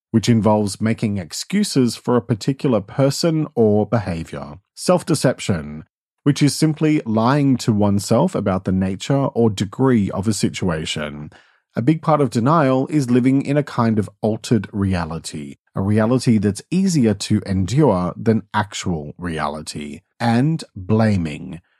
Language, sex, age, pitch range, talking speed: English, male, 40-59, 100-140 Hz, 135 wpm